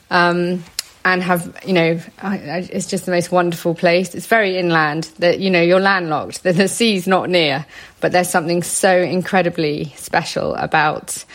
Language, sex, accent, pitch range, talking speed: English, female, British, 175-200 Hz, 175 wpm